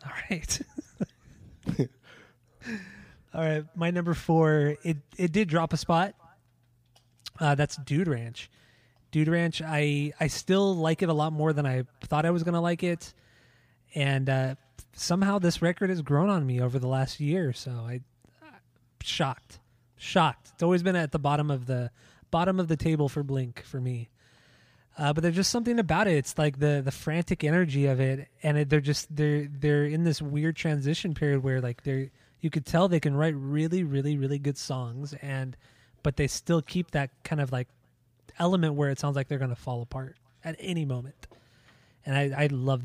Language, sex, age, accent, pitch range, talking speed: English, male, 20-39, American, 130-165 Hz, 190 wpm